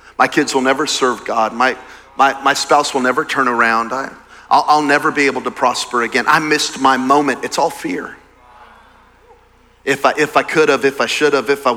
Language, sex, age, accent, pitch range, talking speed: English, male, 40-59, American, 125-150 Hz, 190 wpm